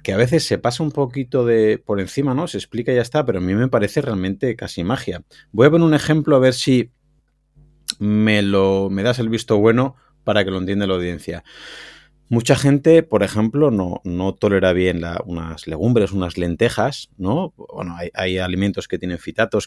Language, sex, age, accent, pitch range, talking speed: Spanish, male, 30-49, Spanish, 100-135 Hz, 200 wpm